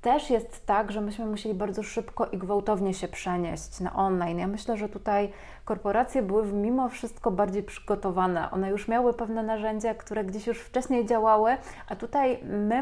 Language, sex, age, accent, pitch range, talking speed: Polish, female, 30-49, native, 185-215 Hz, 175 wpm